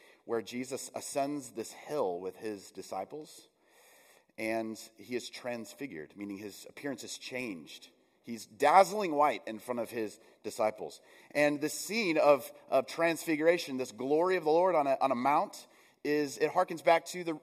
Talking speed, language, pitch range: 160 wpm, English, 125-180 Hz